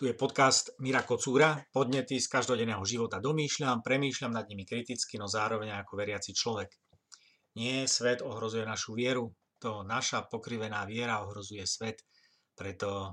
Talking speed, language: 140 wpm, Slovak